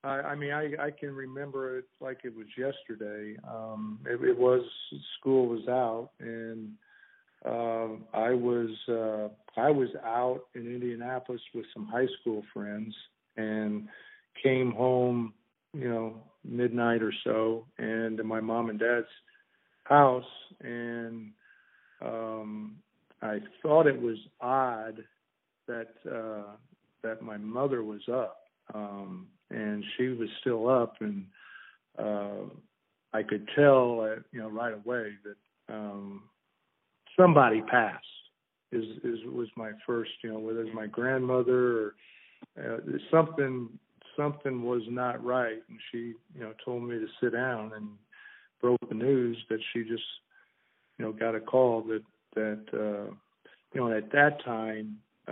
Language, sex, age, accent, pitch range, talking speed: English, male, 50-69, American, 110-125 Hz, 140 wpm